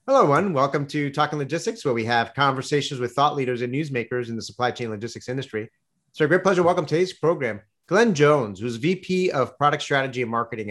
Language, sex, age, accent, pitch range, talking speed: English, male, 30-49, American, 120-150 Hz, 205 wpm